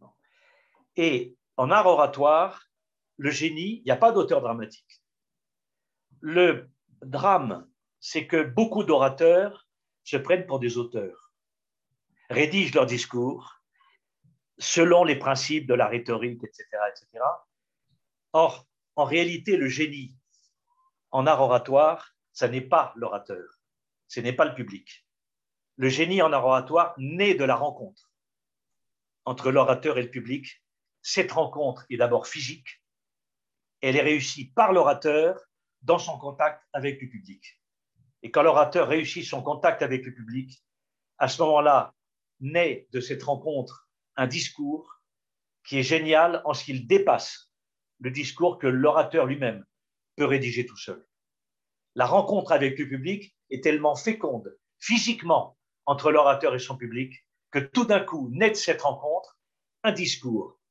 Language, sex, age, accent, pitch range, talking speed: French, male, 50-69, French, 130-180 Hz, 135 wpm